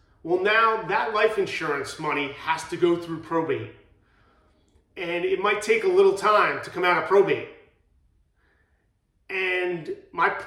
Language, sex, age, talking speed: English, male, 30-49, 145 wpm